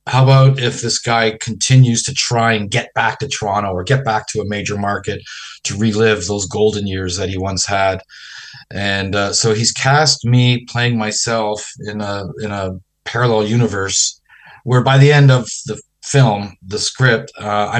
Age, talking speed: 40-59, 180 wpm